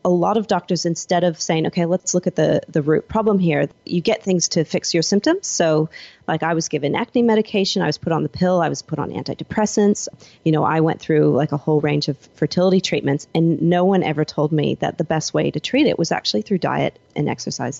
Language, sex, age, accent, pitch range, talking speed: English, female, 30-49, American, 150-175 Hz, 245 wpm